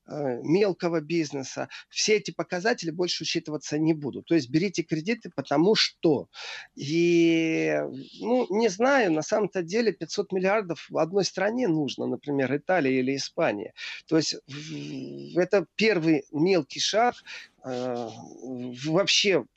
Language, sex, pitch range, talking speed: Russian, male, 145-190 Hz, 120 wpm